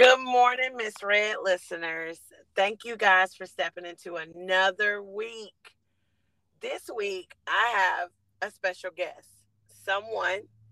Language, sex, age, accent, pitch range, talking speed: English, female, 40-59, American, 160-205 Hz, 120 wpm